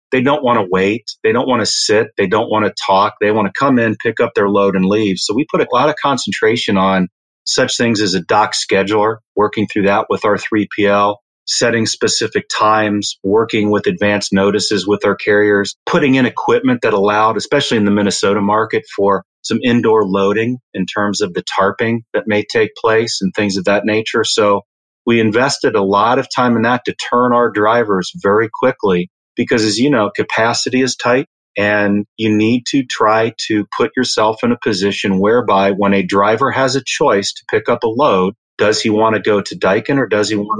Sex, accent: male, American